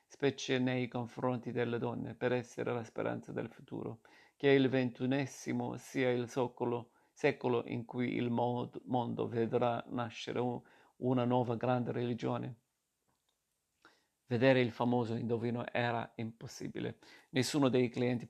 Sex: male